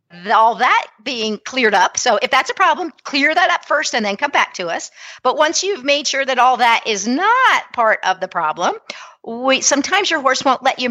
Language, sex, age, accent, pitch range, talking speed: English, female, 50-69, American, 195-265 Hz, 225 wpm